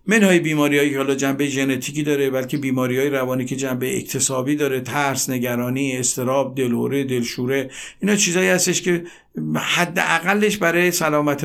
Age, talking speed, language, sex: 50-69, 140 wpm, Persian, male